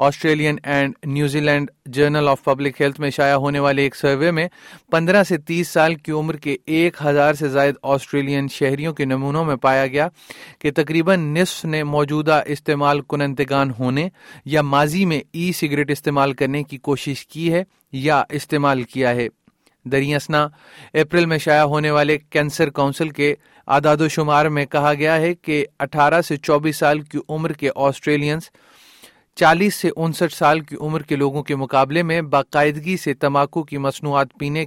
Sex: male